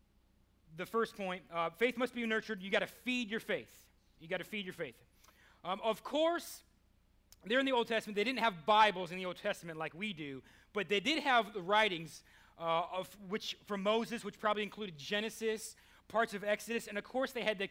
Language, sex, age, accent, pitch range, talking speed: English, male, 30-49, American, 165-220 Hz, 215 wpm